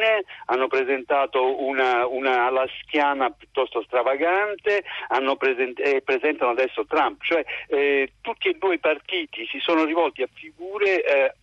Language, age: Italian, 50-69